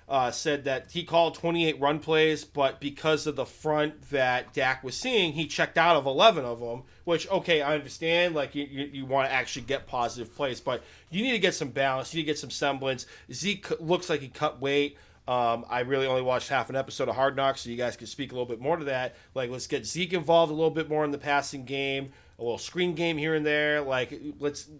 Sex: male